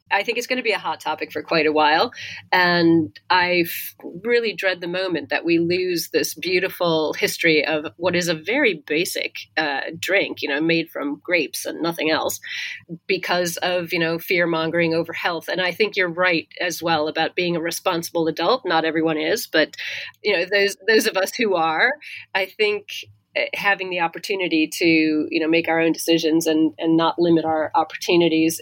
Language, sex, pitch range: English, female, 160-185 Hz